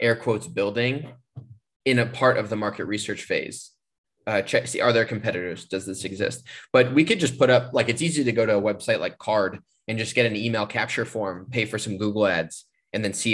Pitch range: 95-120 Hz